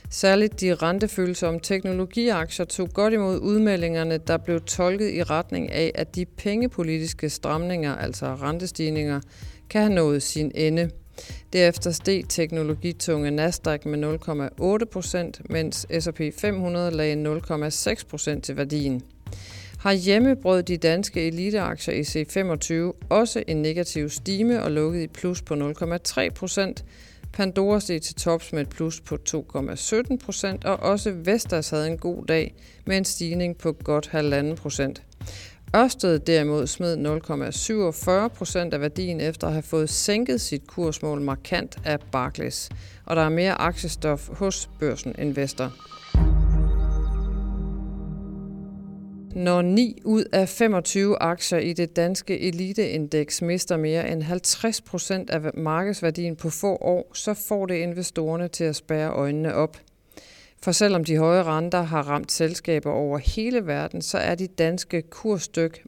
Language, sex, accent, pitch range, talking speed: Danish, female, native, 155-190 Hz, 130 wpm